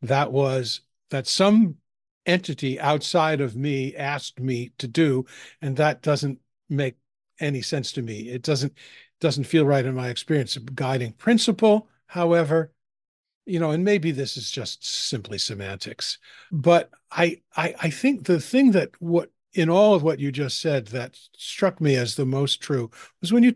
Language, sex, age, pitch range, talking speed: English, male, 50-69, 135-175 Hz, 170 wpm